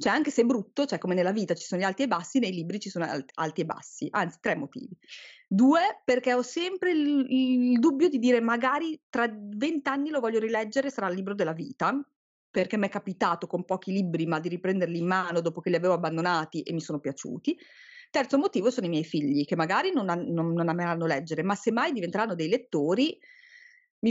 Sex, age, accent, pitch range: female, 30-49, native, 170-235 Hz